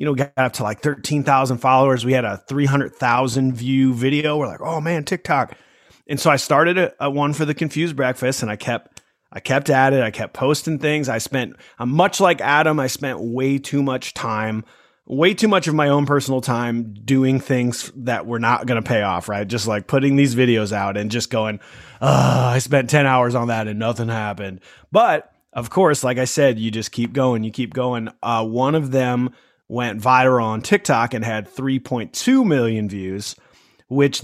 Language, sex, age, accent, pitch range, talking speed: English, male, 30-49, American, 120-140 Hz, 205 wpm